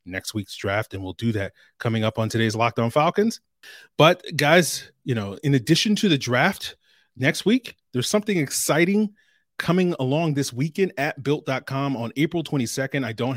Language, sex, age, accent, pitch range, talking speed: English, male, 30-49, American, 115-150 Hz, 170 wpm